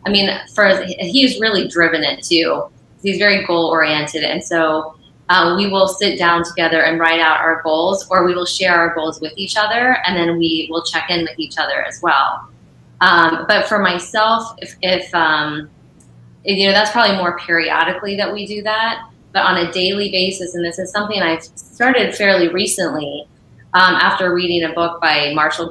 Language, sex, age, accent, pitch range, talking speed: English, female, 20-39, American, 160-195 Hz, 190 wpm